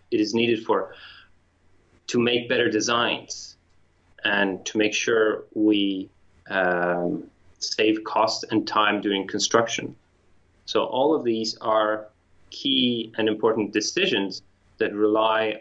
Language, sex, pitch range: English, male, 95-115 Hz